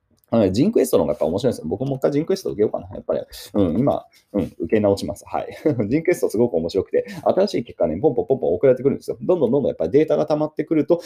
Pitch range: 105-165 Hz